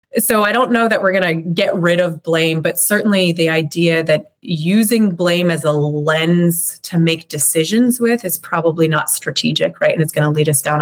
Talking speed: 210 wpm